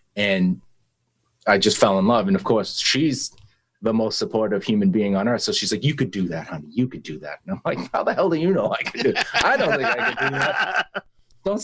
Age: 30-49